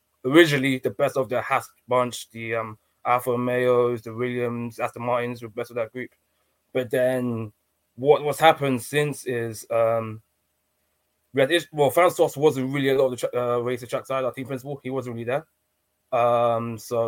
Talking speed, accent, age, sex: 185 wpm, British, 20-39, male